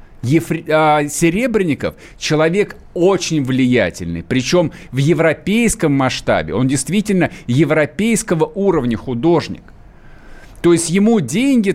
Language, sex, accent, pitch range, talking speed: Russian, male, native, 155-200 Hz, 85 wpm